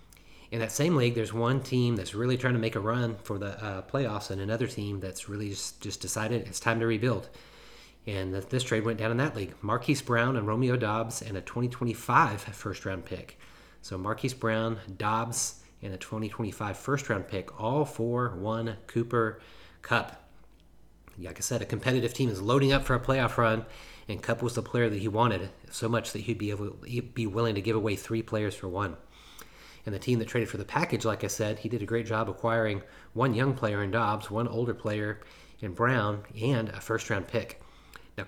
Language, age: English, 30-49